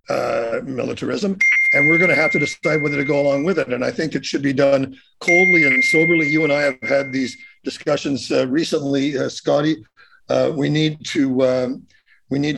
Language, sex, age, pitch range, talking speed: English, male, 50-69, 130-175 Hz, 205 wpm